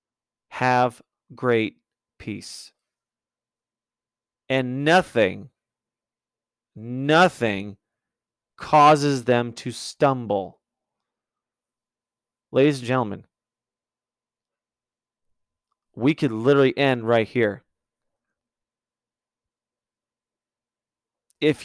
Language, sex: English, male